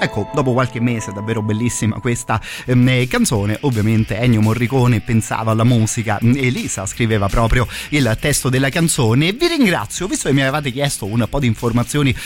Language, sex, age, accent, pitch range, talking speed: Italian, male, 30-49, native, 110-135 Hz, 160 wpm